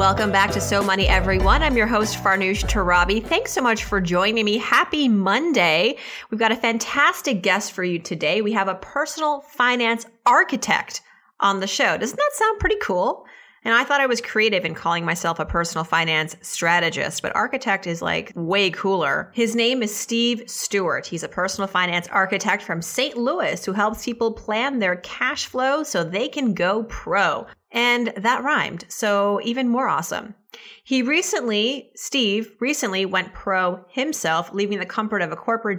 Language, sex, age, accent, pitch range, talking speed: English, female, 30-49, American, 180-240 Hz, 175 wpm